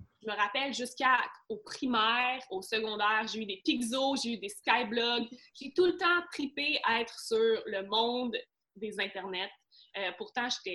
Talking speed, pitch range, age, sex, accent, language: 165 wpm, 215-260 Hz, 20-39, female, Canadian, French